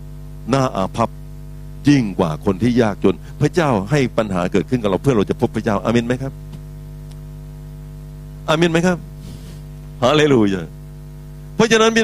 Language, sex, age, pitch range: Thai, male, 60-79, 120-150 Hz